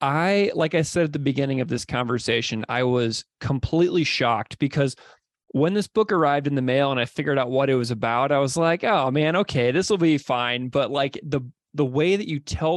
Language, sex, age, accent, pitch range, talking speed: English, male, 20-39, American, 120-150 Hz, 225 wpm